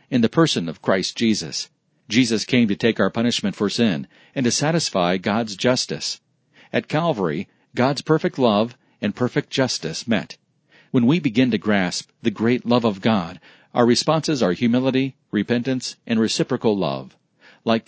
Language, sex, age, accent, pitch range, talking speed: English, male, 40-59, American, 115-135 Hz, 160 wpm